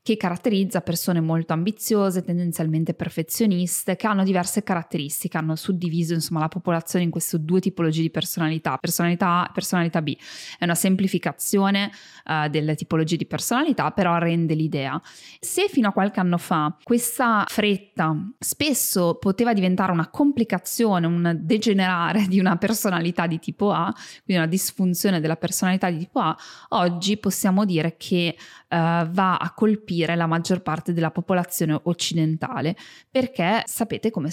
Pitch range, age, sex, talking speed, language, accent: 165-200 Hz, 20-39, female, 145 wpm, Italian, native